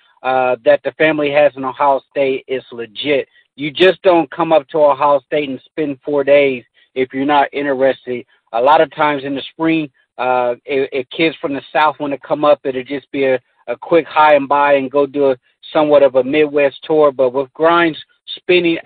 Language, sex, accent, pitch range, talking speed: English, male, American, 140-160 Hz, 210 wpm